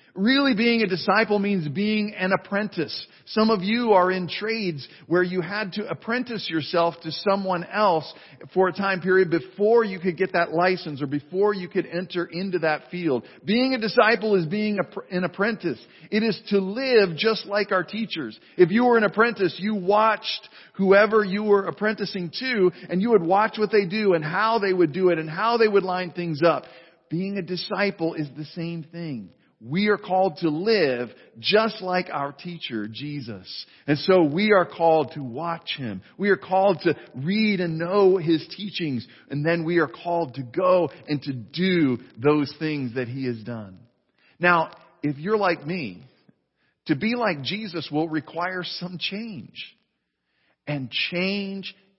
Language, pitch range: English, 155-200 Hz